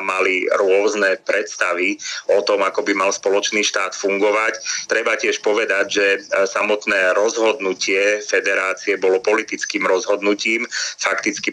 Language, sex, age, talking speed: Slovak, male, 30-49, 115 wpm